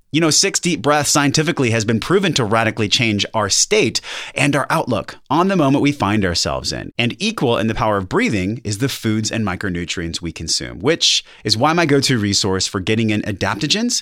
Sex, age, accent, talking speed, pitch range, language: male, 30-49, American, 205 wpm, 105-140 Hz, English